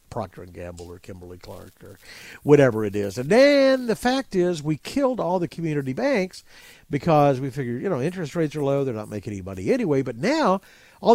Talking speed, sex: 205 wpm, male